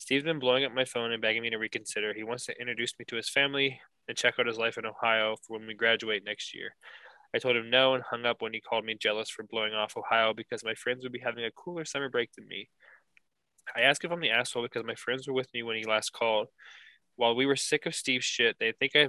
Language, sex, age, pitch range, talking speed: English, male, 20-39, 110-135 Hz, 270 wpm